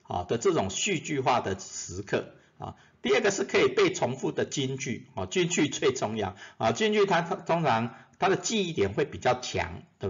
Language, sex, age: Chinese, male, 50-69